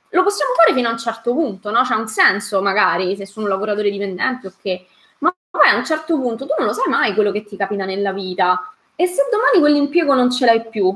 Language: Italian